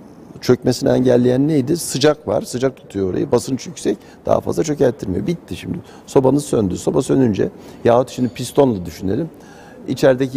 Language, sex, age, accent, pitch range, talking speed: Turkish, male, 60-79, native, 105-150 Hz, 140 wpm